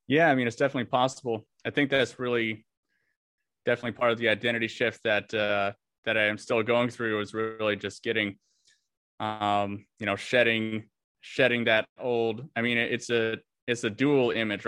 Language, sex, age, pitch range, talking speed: English, male, 20-39, 105-120 Hz, 175 wpm